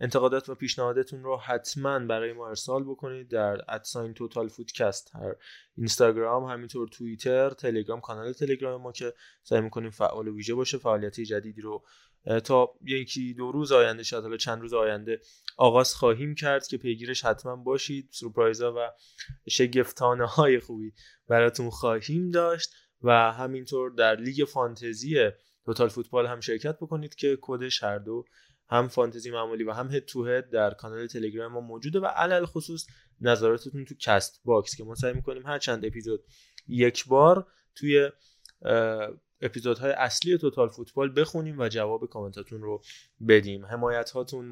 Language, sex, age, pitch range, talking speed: Persian, male, 20-39, 115-135 Hz, 150 wpm